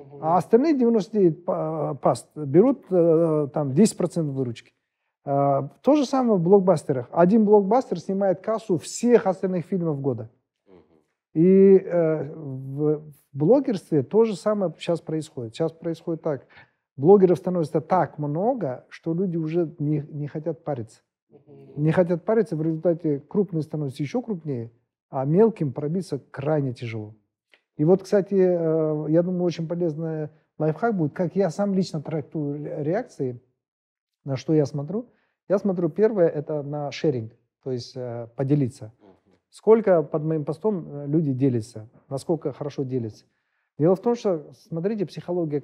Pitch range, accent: 140-180 Hz, native